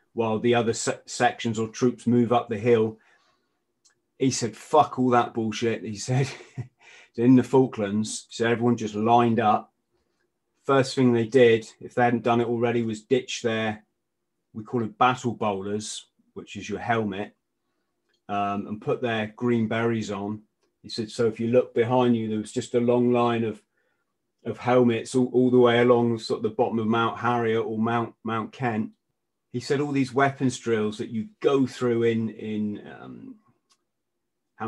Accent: British